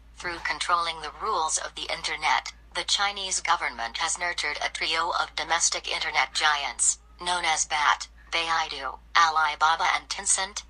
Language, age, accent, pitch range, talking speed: English, 40-59, American, 150-190 Hz, 140 wpm